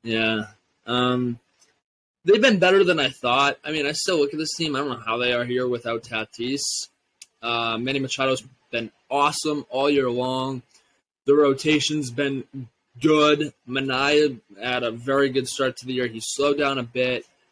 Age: 20-39